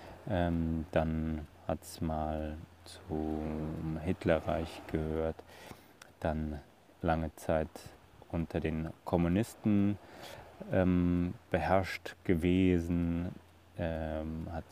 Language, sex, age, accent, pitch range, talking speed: German, male, 30-49, German, 80-90 Hz, 75 wpm